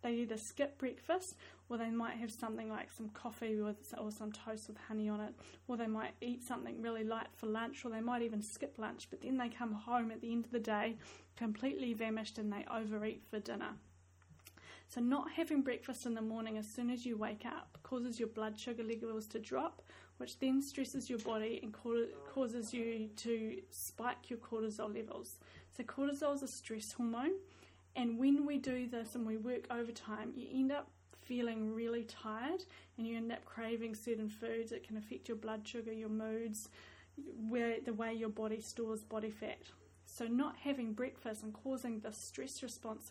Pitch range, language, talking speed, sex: 220-245 Hz, English, 190 wpm, female